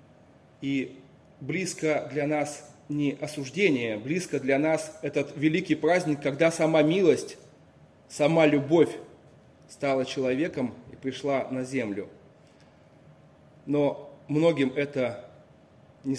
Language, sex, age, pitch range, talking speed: Russian, male, 30-49, 130-150 Hz, 100 wpm